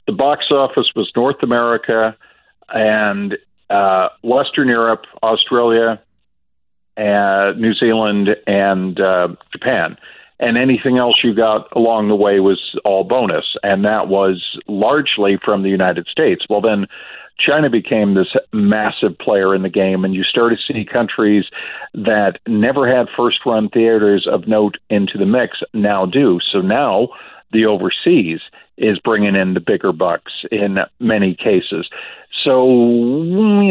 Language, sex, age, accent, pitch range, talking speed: English, male, 50-69, American, 100-120 Hz, 140 wpm